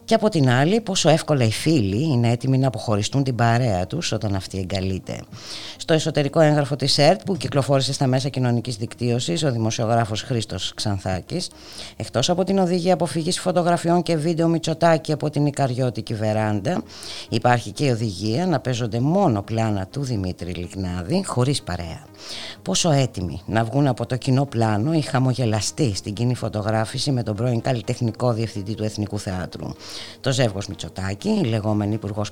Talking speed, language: 160 wpm, Greek